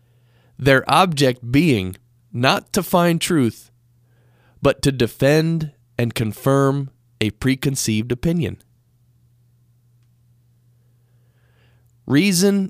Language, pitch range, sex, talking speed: English, 120-145 Hz, male, 75 wpm